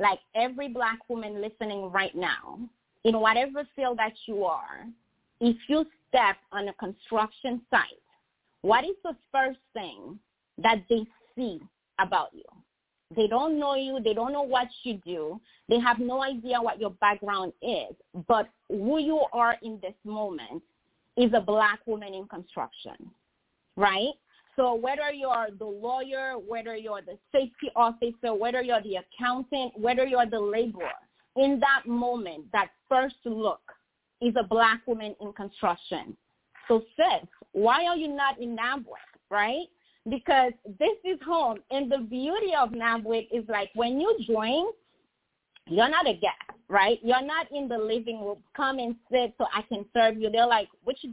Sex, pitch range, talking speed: female, 220-265 Hz, 165 wpm